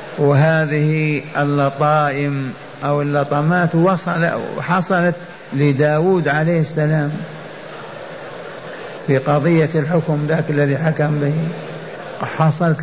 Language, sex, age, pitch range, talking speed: Arabic, male, 60-79, 155-180 Hz, 75 wpm